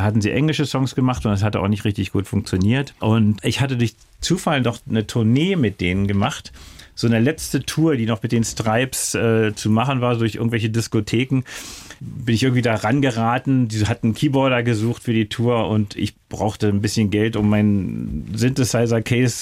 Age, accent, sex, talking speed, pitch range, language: 40-59, German, male, 195 wpm, 110-140 Hz, German